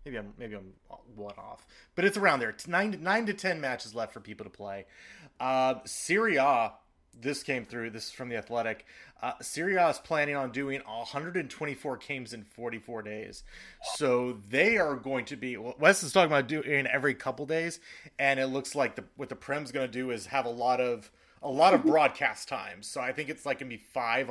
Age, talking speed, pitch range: 30-49, 220 wpm, 115-135 Hz